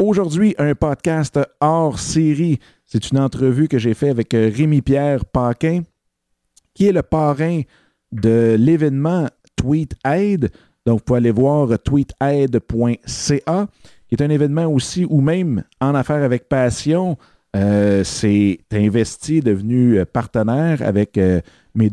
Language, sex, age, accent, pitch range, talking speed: French, male, 50-69, Canadian, 115-145 Hz, 130 wpm